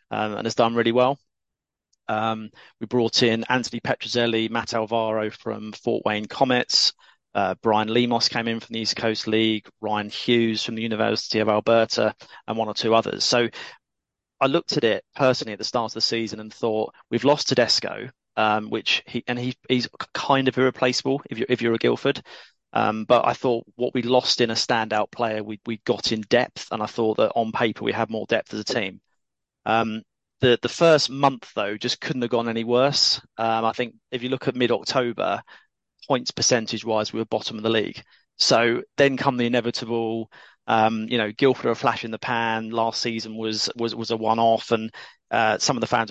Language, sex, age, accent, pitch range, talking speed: English, male, 30-49, British, 110-125 Hz, 200 wpm